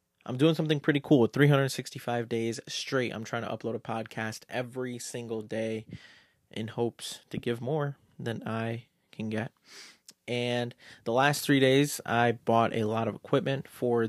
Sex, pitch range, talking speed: male, 110-125 Hz, 165 wpm